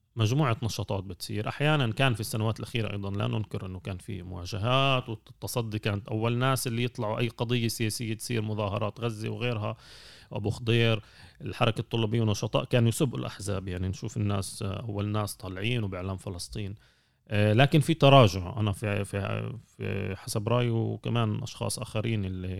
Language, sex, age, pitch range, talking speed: Arabic, male, 30-49, 105-125 Hz, 150 wpm